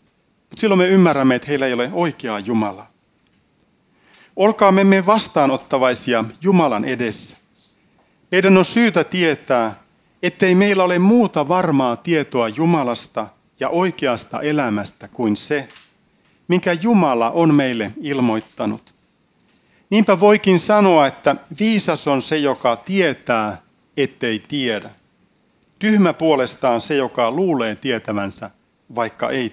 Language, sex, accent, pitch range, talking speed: Finnish, male, native, 120-185 Hz, 110 wpm